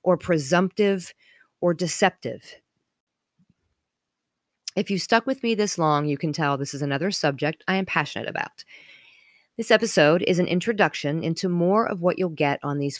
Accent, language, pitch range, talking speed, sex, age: American, English, 155-215 Hz, 160 wpm, female, 40-59